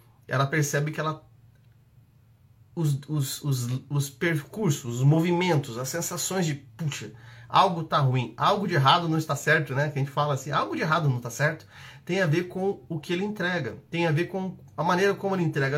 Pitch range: 125-170 Hz